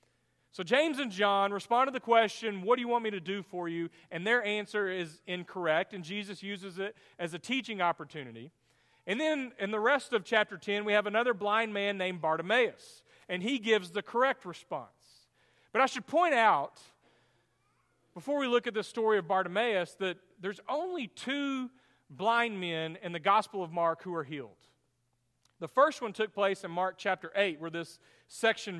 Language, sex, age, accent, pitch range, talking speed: English, male, 40-59, American, 180-230 Hz, 190 wpm